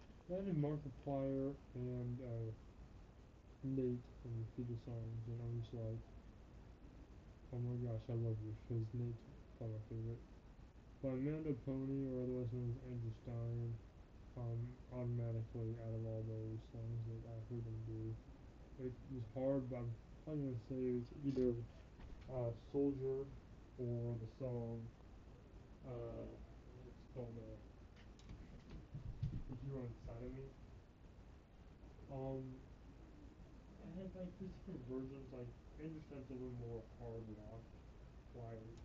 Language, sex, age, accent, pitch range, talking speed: English, male, 10-29, American, 110-130 Hz, 135 wpm